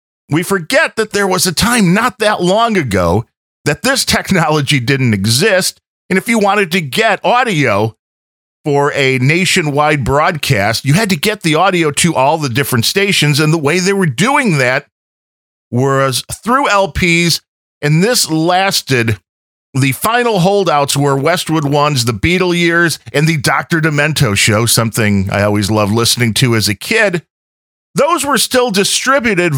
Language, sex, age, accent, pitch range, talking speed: English, male, 40-59, American, 115-180 Hz, 160 wpm